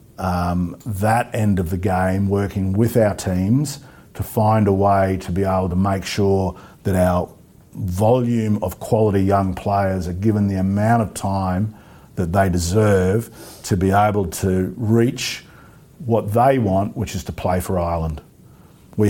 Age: 50-69